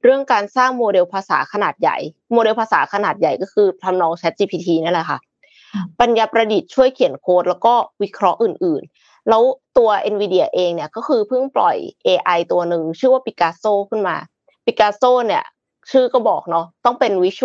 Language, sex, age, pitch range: Thai, female, 20-39, 185-245 Hz